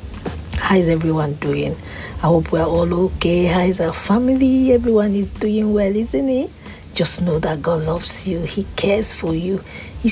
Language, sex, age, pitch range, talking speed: English, female, 50-69, 155-185 Hz, 180 wpm